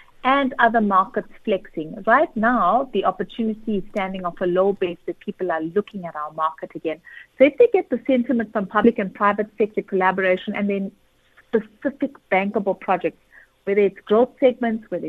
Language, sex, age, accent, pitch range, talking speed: English, female, 50-69, Indian, 190-230 Hz, 175 wpm